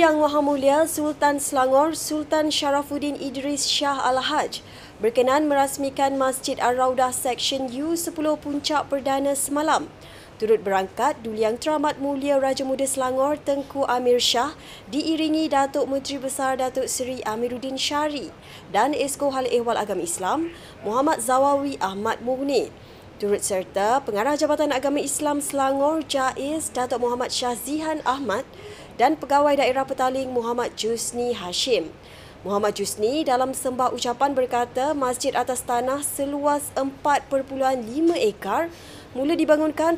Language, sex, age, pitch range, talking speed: Malay, female, 20-39, 250-290 Hz, 125 wpm